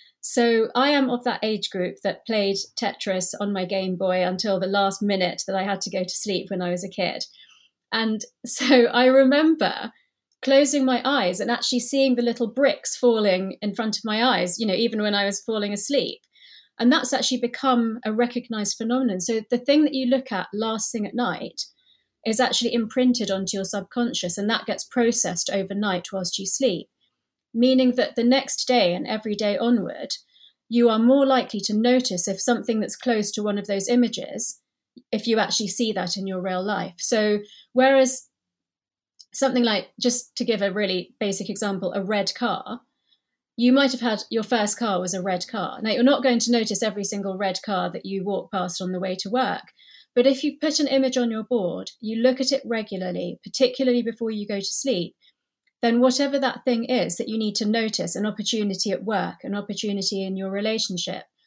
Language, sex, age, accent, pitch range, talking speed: English, female, 30-49, British, 195-245 Hz, 200 wpm